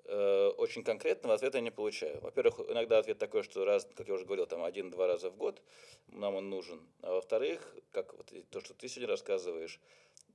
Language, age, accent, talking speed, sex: Russian, 20-39, native, 190 wpm, male